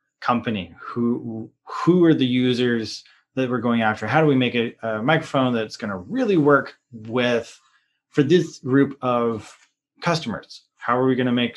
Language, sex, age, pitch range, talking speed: English, male, 20-39, 115-145 Hz, 175 wpm